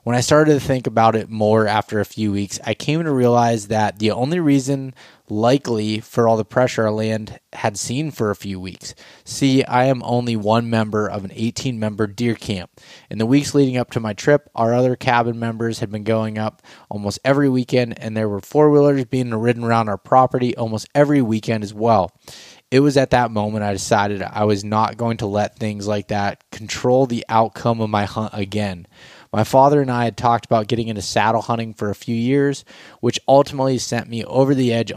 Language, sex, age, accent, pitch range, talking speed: English, male, 20-39, American, 110-125 Hz, 210 wpm